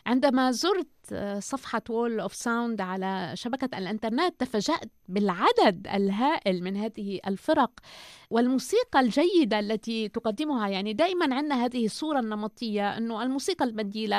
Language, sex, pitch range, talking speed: Arabic, female, 220-275 Hz, 120 wpm